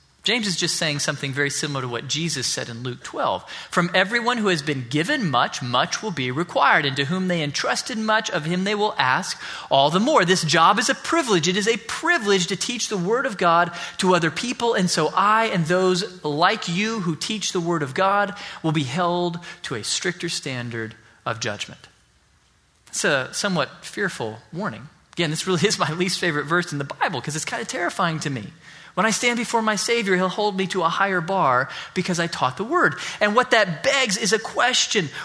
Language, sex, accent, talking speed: English, male, American, 215 wpm